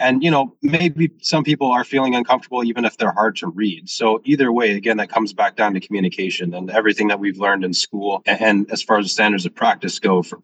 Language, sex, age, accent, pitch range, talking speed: English, male, 20-39, American, 95-115 Hz, 240 wpm